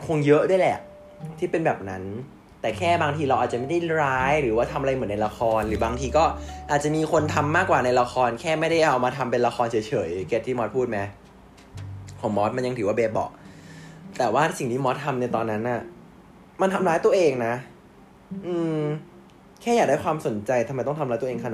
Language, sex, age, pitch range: Thai, male, 20-39, 115-175 Hz